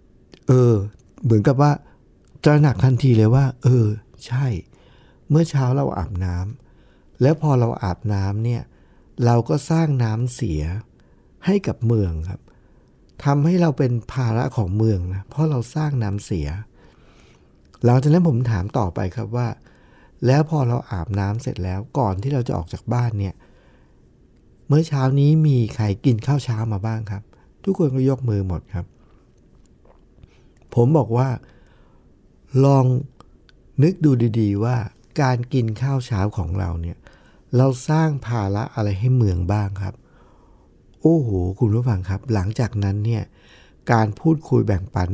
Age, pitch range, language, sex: 60-79, 100-140 Hz, Thai, male